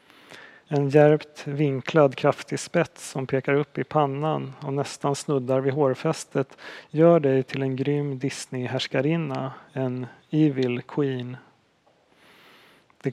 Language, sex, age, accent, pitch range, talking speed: Swedish, male, 30-49, native, 135-150 Hz, 115 wpm